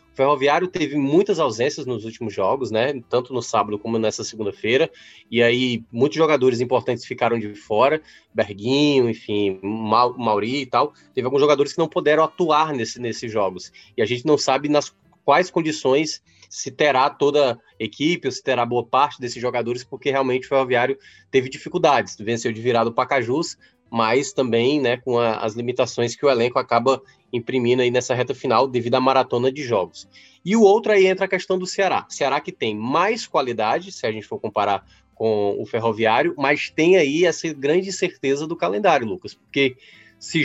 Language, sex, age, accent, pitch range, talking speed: Portuguese, male, 20-39, Brazilian, 120-150 Hz, 185 wpm